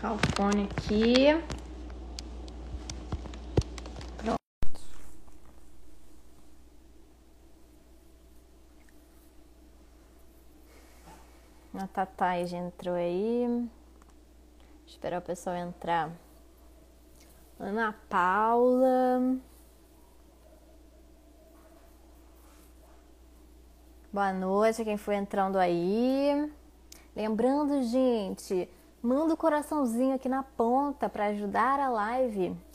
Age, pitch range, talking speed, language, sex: 20-39, 200-290 Hz, 60 wpm, Portuguese, female